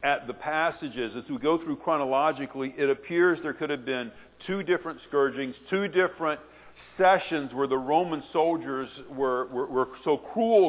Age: 50-69